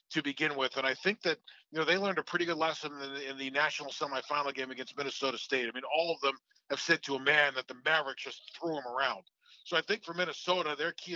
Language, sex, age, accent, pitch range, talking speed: English, male, 40-59, American, 135-160 Hz, 260 wpm